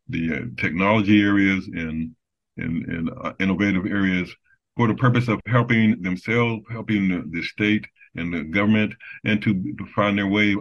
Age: 50-69